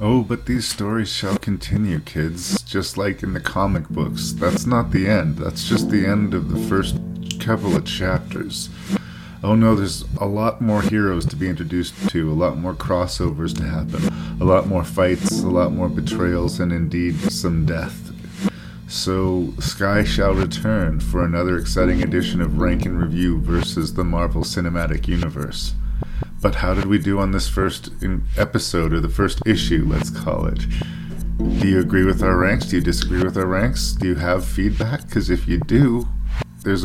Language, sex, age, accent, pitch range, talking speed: English, male, 40-59, American, 80-100 Hz, 180 wpm